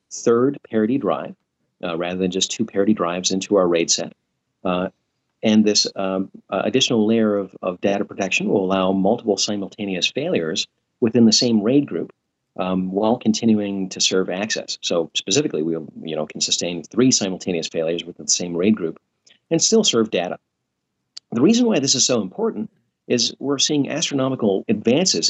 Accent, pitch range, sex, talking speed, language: American, 95-120 Hz, male, 165 wpm, English